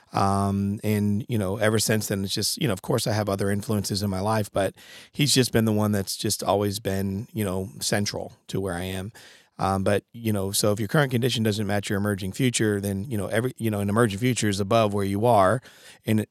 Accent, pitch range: American, 100-115 Hz